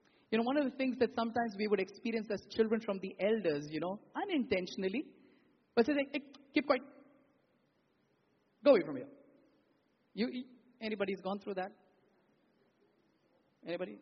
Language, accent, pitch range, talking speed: English, Indian, 205-285 Hz, 150 wpm